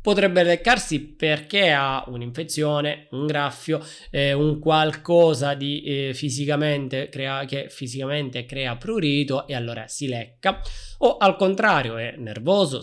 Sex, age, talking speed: male, 20-39, 110 wpm